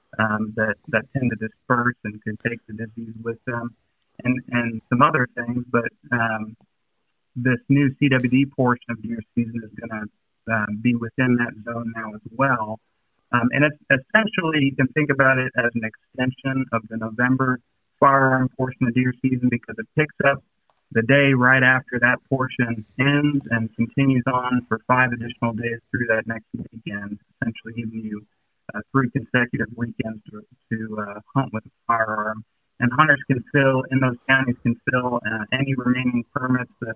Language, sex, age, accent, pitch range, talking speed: English, male, 30-49, American, 115-130 Hz, 175 wpm